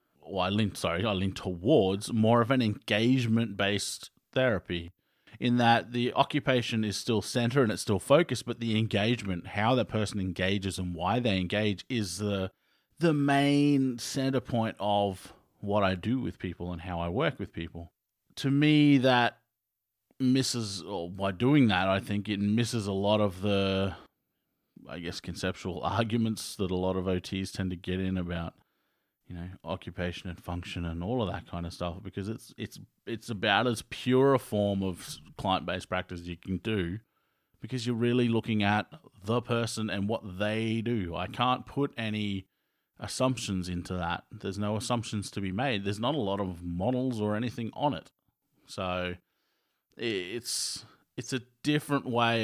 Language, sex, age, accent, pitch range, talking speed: English, male, 30-49, Australian, 95-120 Hz, 175 wpm